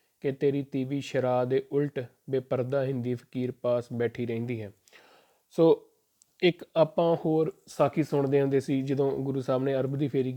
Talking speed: 170 wpm